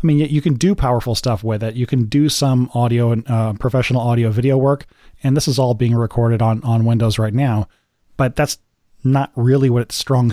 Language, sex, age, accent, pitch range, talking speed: English, male, 30-49, American, 115-135 Hz, 220 wpm